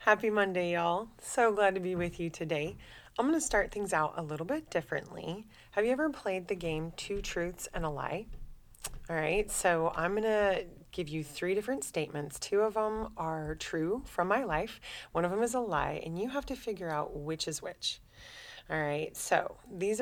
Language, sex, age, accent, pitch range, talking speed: English, female, 30-49, American, 155-205 Hz, 205 wpm